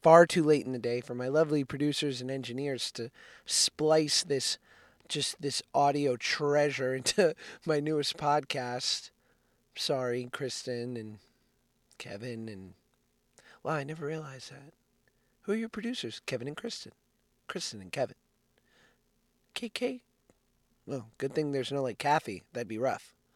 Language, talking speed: English, 140 wpm